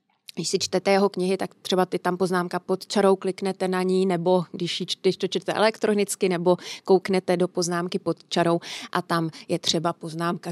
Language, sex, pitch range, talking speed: Czech, female, 185-210 Hz, 175 wpm